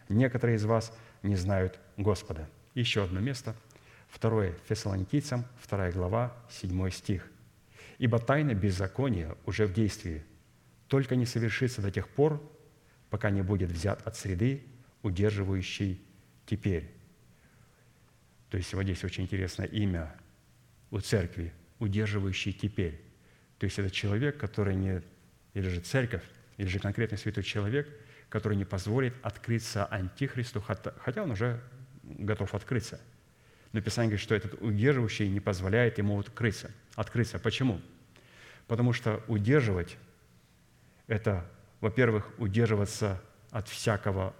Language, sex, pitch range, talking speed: Russian, male, 100-115 Hz, 120 wpm